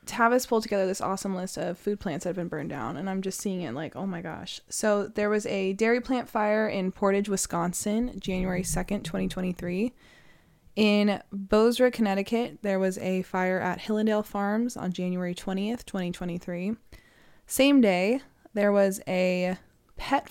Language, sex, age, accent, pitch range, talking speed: English, female, 20-39, American, 180-220 Hz, 170 wpm